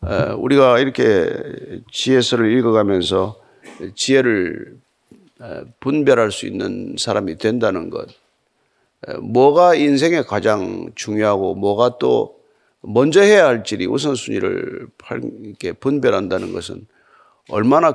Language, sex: Korean, male